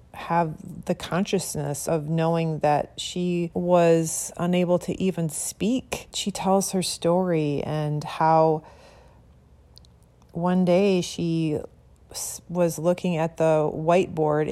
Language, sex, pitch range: English, female, 145-180 Hz